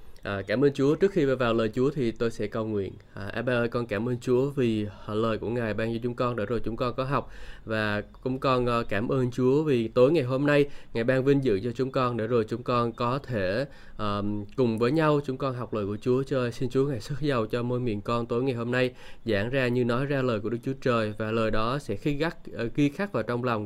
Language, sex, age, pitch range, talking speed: Vietnamese, male, 20-39, 115-135 Hz, 265 wpm